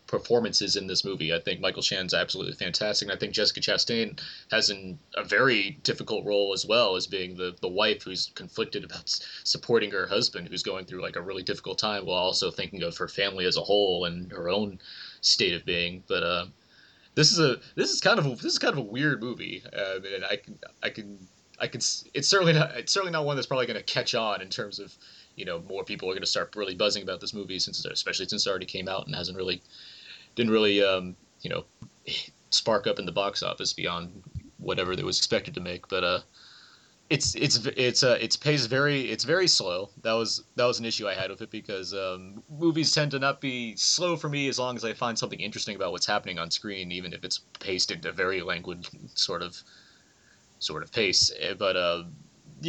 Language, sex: English, male